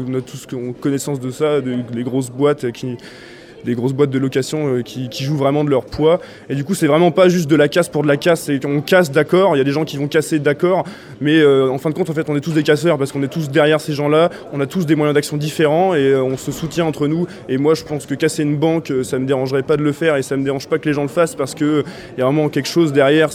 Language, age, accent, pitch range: French, 20-39, French, 140-160 Hz